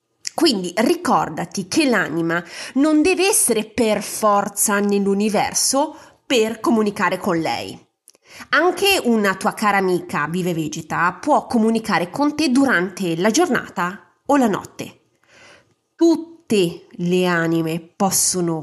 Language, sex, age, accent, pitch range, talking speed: Italian, female, 30-49, native, 185-290 Hz, 115 wpm